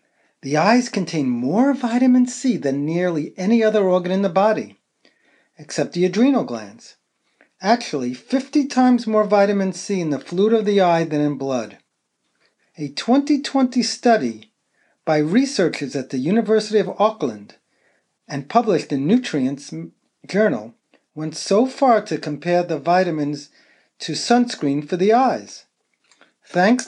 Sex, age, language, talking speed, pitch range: male, 40-59, English, 135 wpm, 155-235 Hz